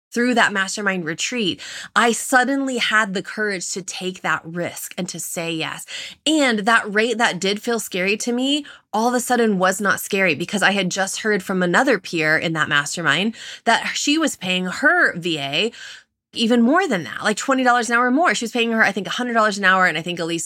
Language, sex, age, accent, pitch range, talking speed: English, female, 20-39, American, 175-235 Hz, 210 wpm